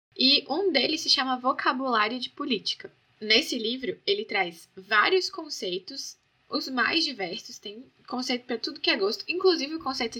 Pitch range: 210-295 Hz